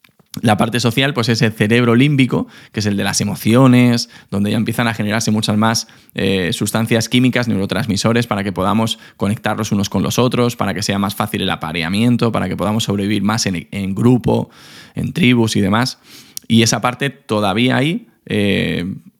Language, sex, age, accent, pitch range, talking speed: Spanish, male, 20-39, Spanish, 100-120 Hz, 180 wpm